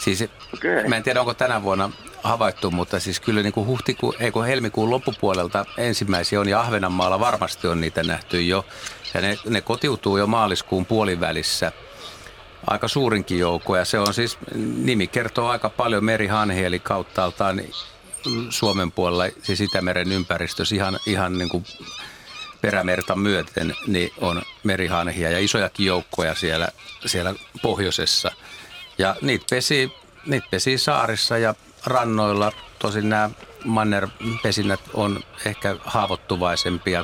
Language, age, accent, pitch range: Finnish, 50-69, native, 90-110 Hz